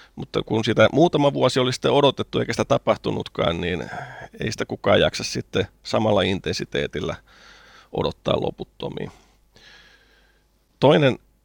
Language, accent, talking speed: Finnish, native, 115 wpm